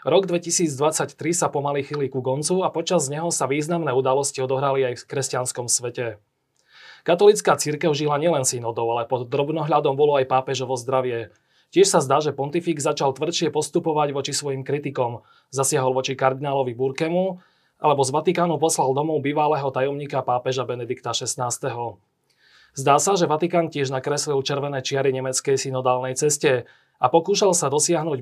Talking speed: 150 wpm